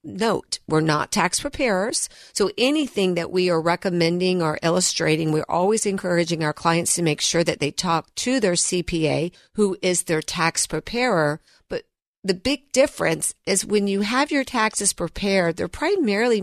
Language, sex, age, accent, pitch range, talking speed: English, female, 50-69, American, 165-210 Hz, 165 wpm